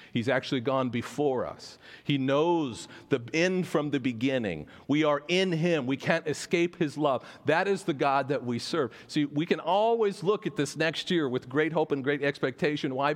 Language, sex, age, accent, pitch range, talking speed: English, male, 40-59, American, 135-175 Hz, 200 wpm